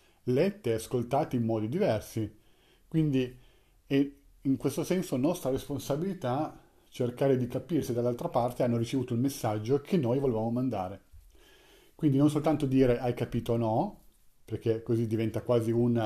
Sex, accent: male, native